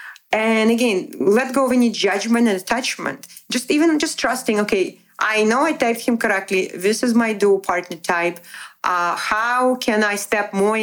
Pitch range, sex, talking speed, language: 180-225 Hz, female, 175 wpm, English